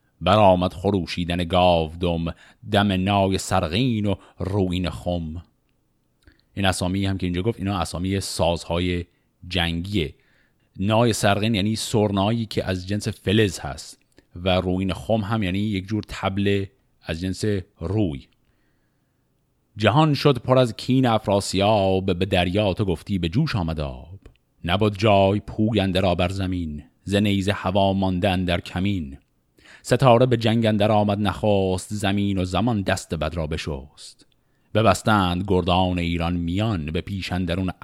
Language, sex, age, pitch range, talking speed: Persian, male, 30-49, 85-105 Hz, 130 wpm